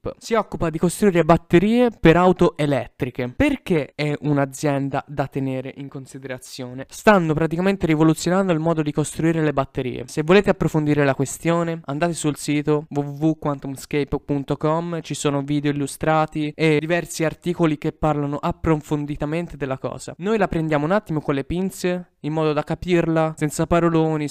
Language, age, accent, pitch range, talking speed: Italian, 20-39, native, 140-175 Hz, 145 wpm